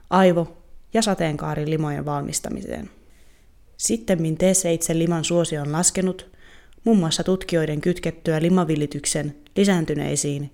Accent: native